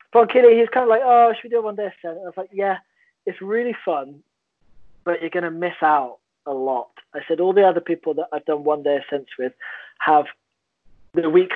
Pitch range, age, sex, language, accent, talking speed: 145-180 Hz, 20-39, male, English, British, 220 wpm